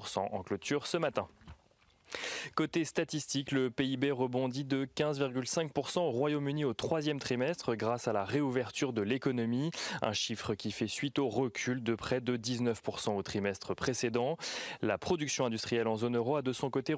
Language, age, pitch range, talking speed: French, 20-39, 110-140 Hz, 165 wpm